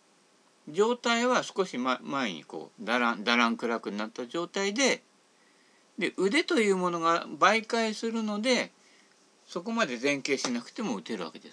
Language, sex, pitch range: Japanese, male, 170-250 Hz